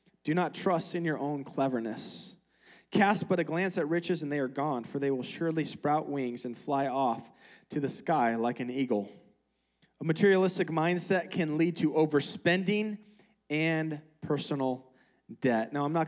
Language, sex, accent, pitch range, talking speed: English, male, American, 120-155 Hz, 170 wpm